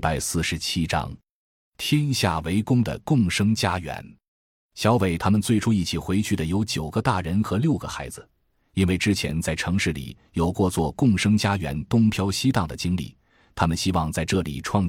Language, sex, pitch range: Chinese, male, 80-105 Hz